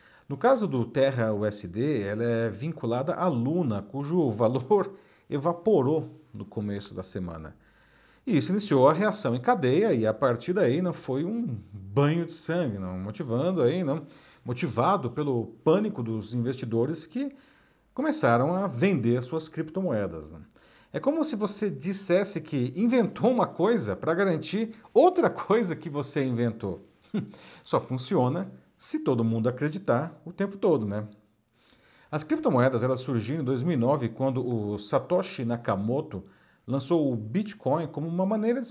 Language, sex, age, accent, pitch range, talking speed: Portuguese, male, 50-69, Brazilian, 120-180 Hz, 145 wpm